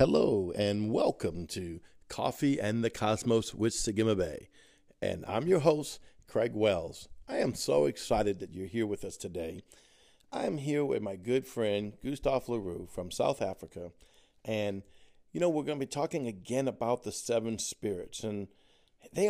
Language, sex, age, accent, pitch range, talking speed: English, male, 50-69, American, 115-150 Hz, 165 wpm